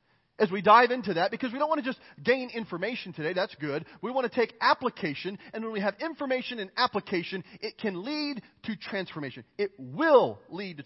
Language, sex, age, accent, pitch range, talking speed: English, male, 40-59, American, 190-250 Hz, 205 wpm